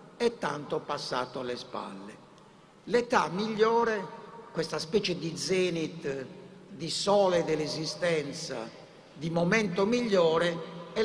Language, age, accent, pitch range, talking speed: Italian, 60-79, native, 165-225 Hz, 100 wpm